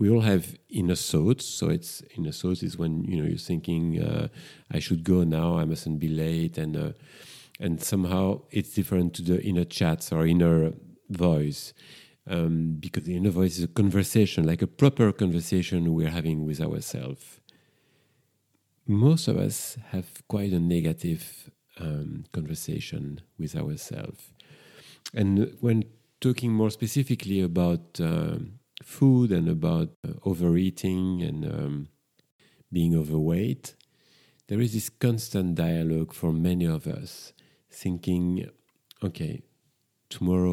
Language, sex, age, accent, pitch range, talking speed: English, male, 40-59, French, 80-100 Hz, 135 wpm